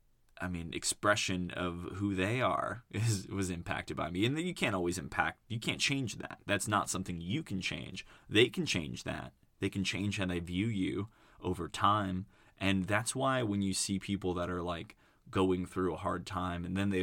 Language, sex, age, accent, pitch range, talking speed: English, male, 20-39, American, 90-105 Hz, 205 wpm